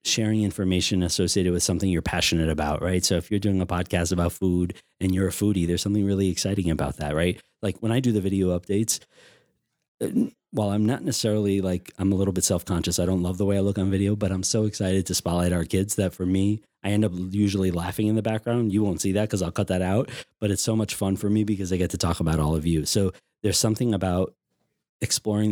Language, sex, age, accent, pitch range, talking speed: English, male, 30-49, American, 90-105 Hz, 240 wpm